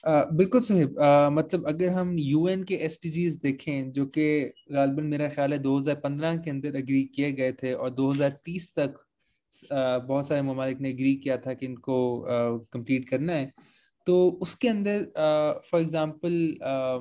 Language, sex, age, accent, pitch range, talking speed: Hindi, male, 20-39, native, 140-170 Hz, 170 wpm